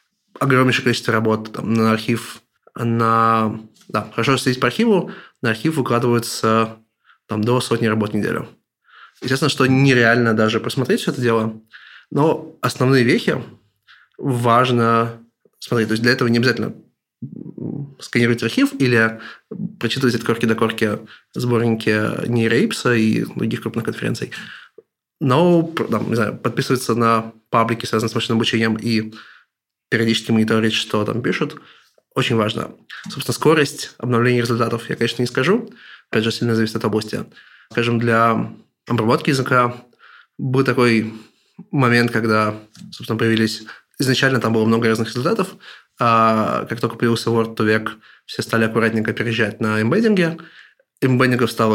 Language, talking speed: Russian, 135 wpm